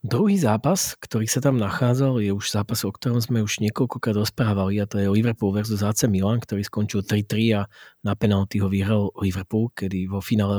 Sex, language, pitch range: male, Slovak, 100-120 Hz